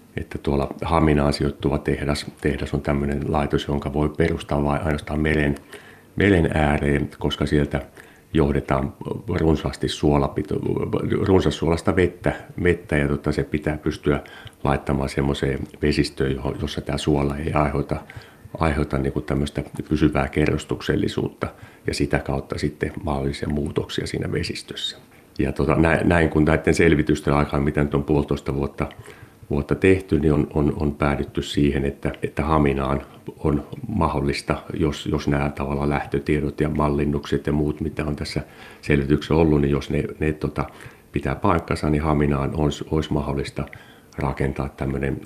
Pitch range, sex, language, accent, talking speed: 70-75 Hz, male, Finnish, native, 135 wpm